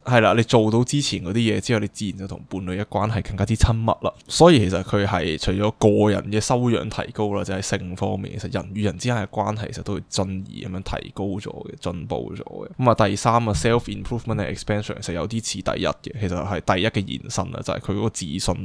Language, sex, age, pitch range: Chinese, male, 10-29, 95-115 Hz